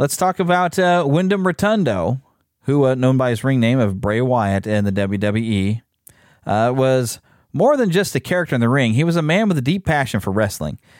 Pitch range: 105-140 Hz